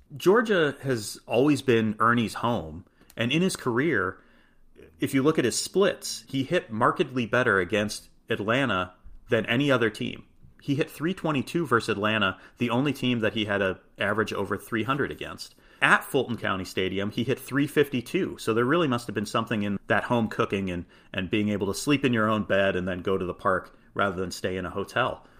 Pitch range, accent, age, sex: 105-135 Hz, American, 30-49, male